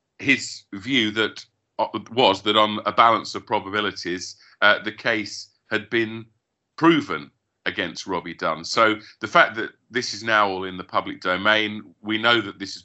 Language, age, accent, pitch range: English, 40-59, British, 95-115 Hz